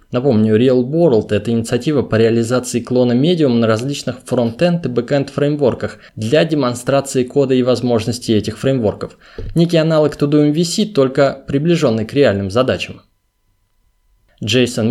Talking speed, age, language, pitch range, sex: 135 wpm, 20-39, Russian, 110-150 Hz, male